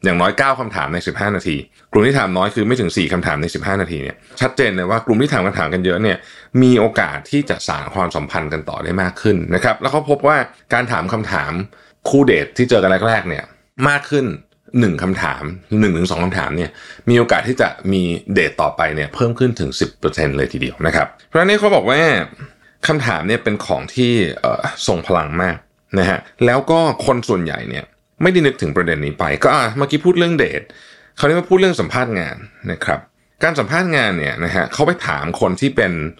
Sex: male